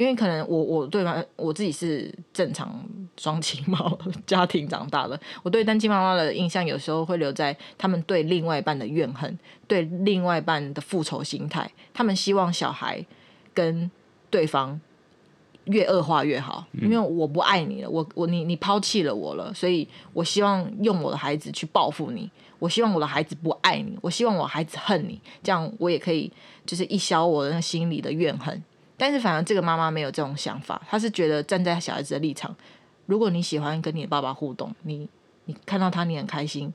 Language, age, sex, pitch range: Chinese, 20-39, female, 155-200 Hz